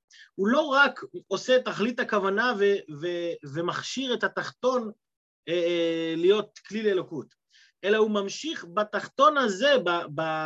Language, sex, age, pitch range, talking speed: Hebrew, male, 30-49, 145-210 Hz, 130 wpm